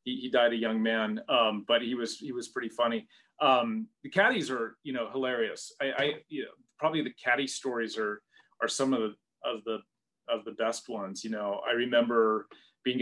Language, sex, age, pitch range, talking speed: English, male, 30-49, 115-135 Hz, 205 wpm